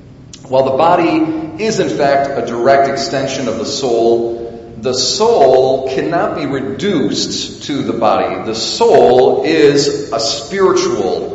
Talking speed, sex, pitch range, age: 130 wpm, male, 125-175 Hz, 40-59